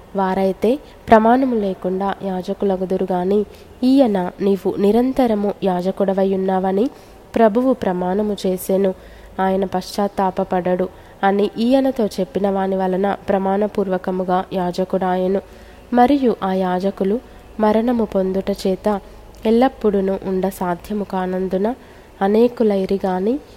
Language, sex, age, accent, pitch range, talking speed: Telugu, female, 20-39, native, 190-215 Hz, 85 wpm